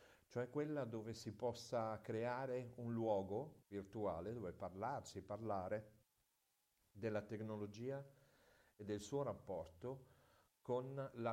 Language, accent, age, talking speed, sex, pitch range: Italian, native, 50-69, 100 wpm, male, 105-130 Hz